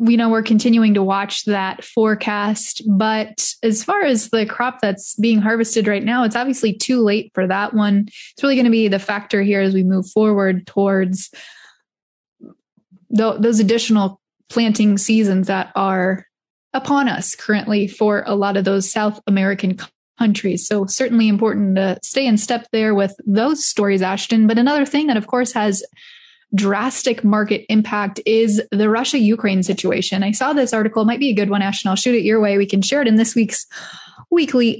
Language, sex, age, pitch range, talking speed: English, female, 10-29, 200-235 Hz, 185 wpm